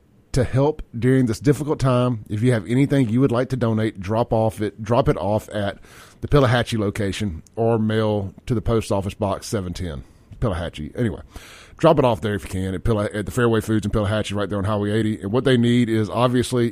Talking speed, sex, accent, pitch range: 225 wpm, male, American, 100-125 Hz